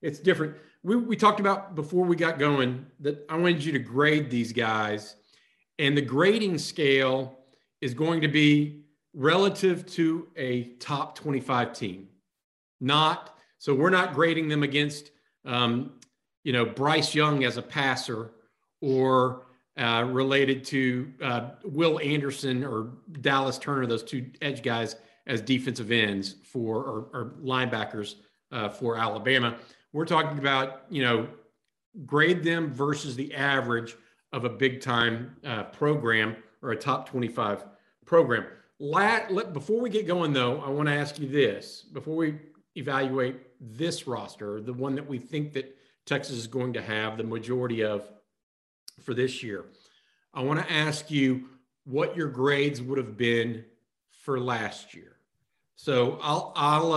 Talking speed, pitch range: 145 wpm, 120-150 Hz